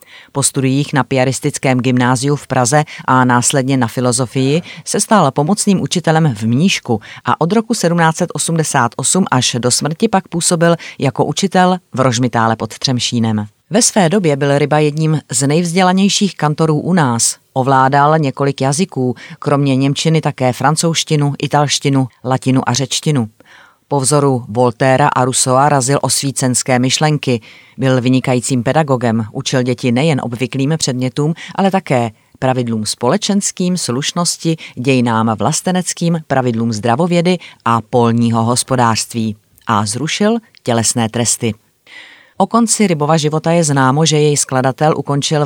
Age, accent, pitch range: 30-49, native, 125-155 Hz